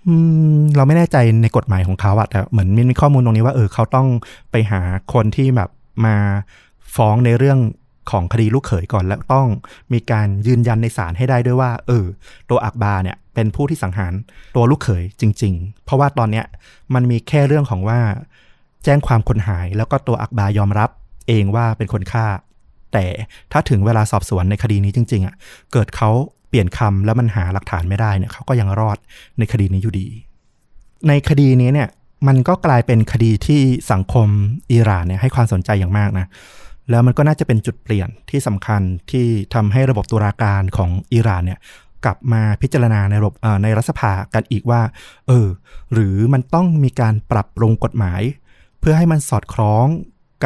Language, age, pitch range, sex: Thai, 20-39, 100-125 Hz, male